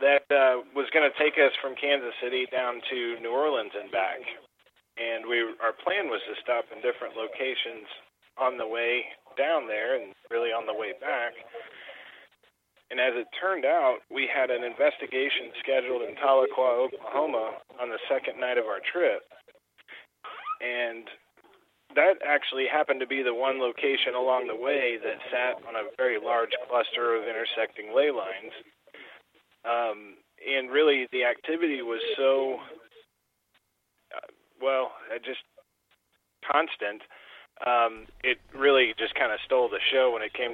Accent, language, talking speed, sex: American, English, 150 wpm, male